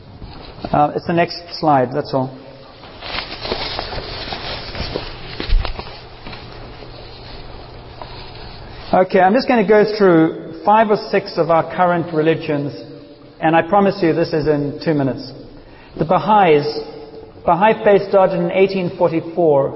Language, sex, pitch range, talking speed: English, male, 145-170 Hz, 110 wpm